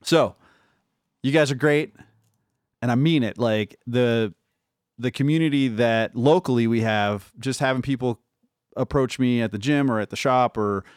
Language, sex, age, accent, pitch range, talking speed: English, male, 30-49, American, 115-150 Hz, 165 wpm